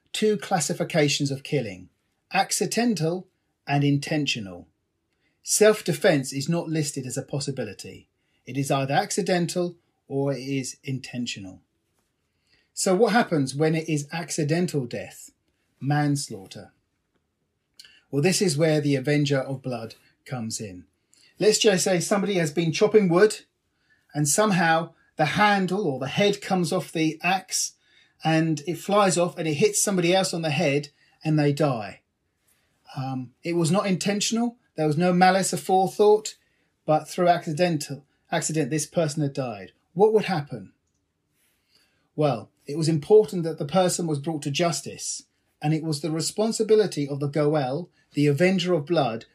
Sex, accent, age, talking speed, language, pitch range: male, British, 40-59, 145 wpm, English, 140-185 Hz